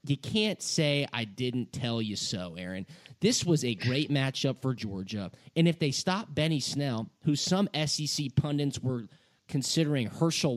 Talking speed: 165 wpm